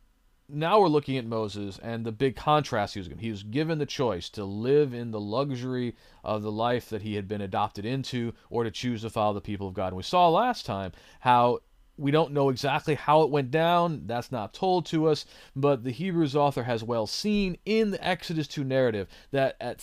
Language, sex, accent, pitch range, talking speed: English, male, American, 105-145 Hz, 220 wpm